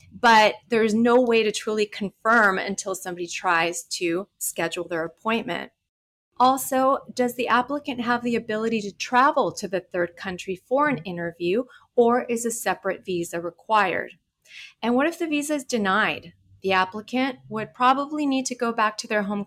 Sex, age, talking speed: female, 30-49, 165 wpm